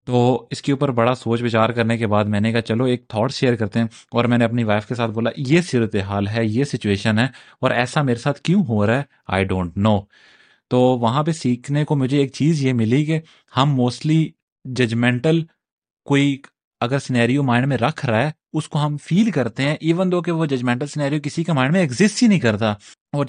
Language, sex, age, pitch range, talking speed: Urdu, male, 30-49, 115-150 Hz, 225 wpm